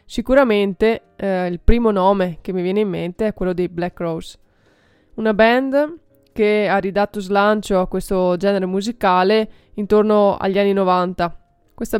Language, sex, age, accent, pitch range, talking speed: Italian, female, 20-39, native, 180-210 Hz, 150 wpm